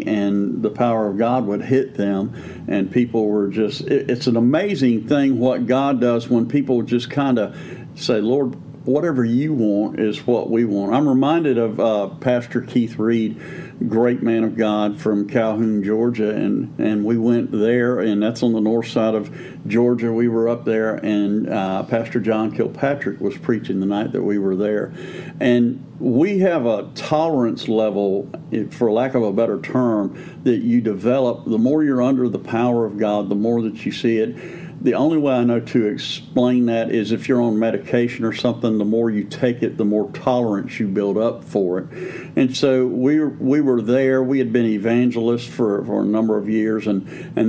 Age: 50-69